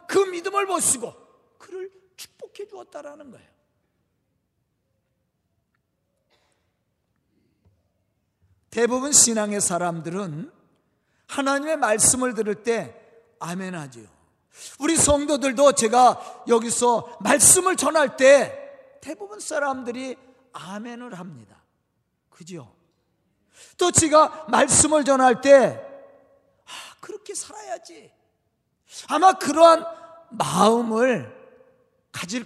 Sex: male